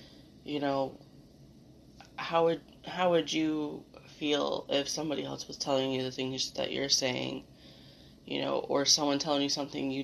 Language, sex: English, female